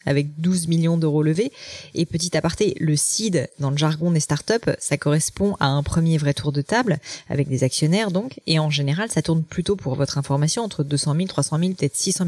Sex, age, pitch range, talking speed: female, 20-39, 150-190 Hz, 215 wpm